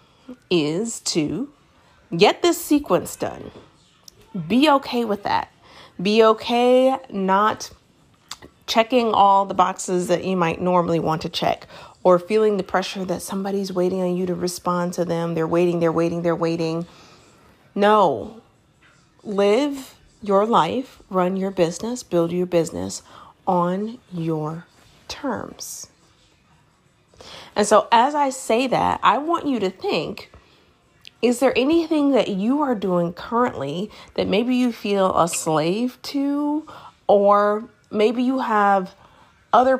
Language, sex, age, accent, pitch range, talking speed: English, female, 30-49, American, 175-240 Hz, 130 wpm